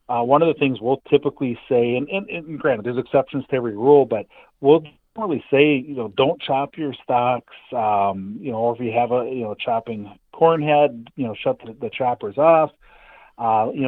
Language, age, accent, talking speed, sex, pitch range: English, 40-59, American, 210 wpm, male, 110-140 Hz